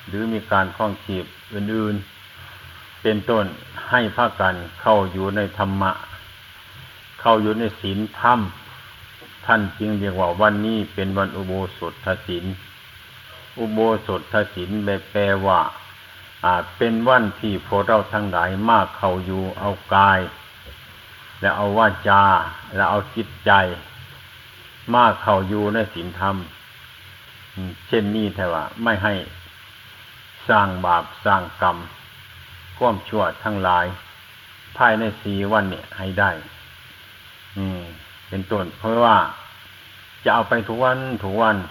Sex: male